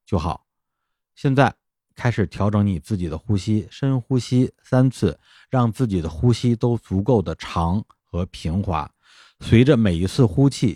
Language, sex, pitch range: Chinese, male, 85-115 Hz